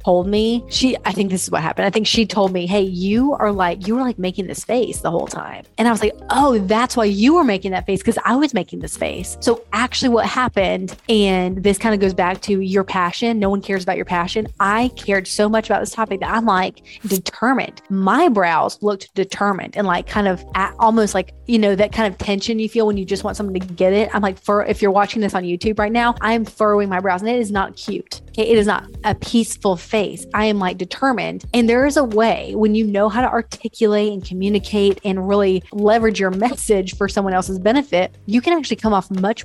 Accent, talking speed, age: American, 245 wpm, 30-49